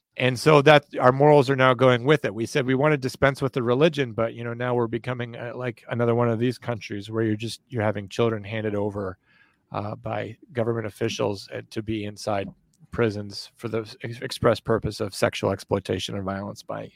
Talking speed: 210 wpm